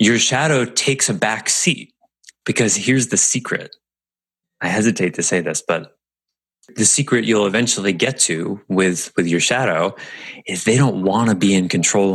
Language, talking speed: English, 170 wpm